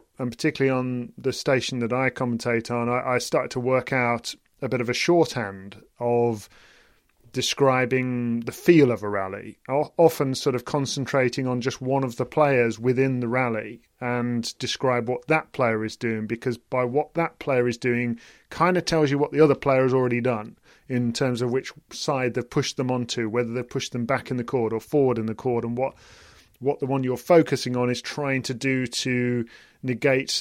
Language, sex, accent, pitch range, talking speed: English, male, British, 120-140 Hz, 200 wpm